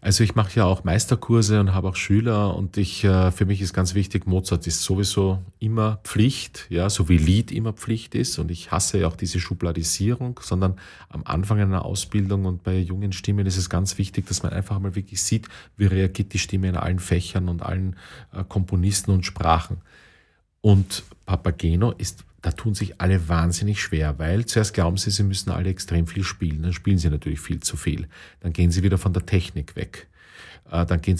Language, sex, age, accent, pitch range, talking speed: German, male, 40-59, Austrian, 90-105 Hz, 200 wpm